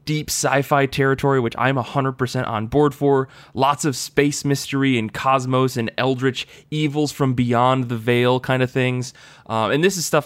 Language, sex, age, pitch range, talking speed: English, male, 20-39, 115-140 Hz, 175 wpm